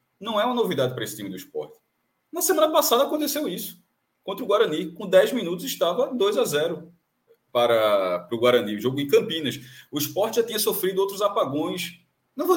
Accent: Brazilian